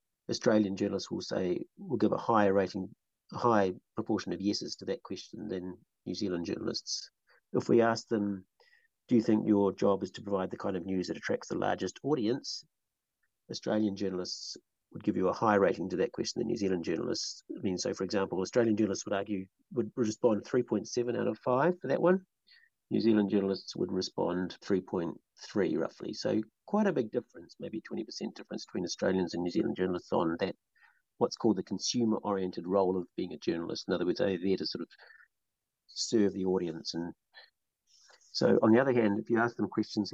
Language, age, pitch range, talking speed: English, 50-69, 95-115 Hz, 200 wpm